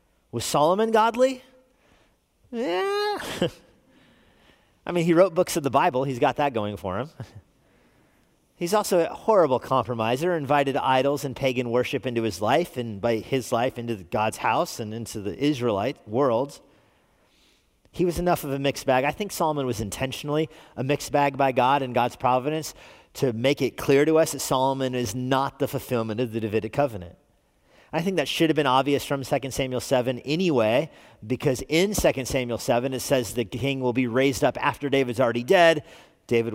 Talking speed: 180 wpm